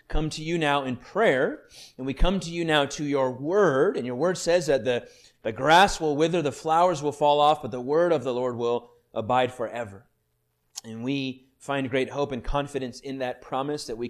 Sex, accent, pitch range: male, American, 125-160 Hz